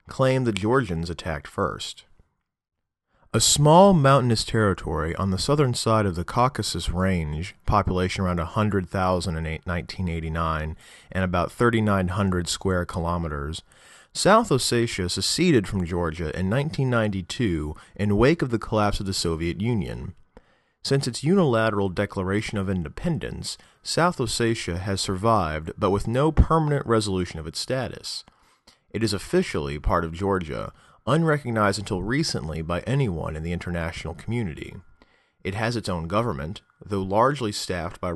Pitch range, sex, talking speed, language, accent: 85-115 Hz, male, 135 wpm, English, American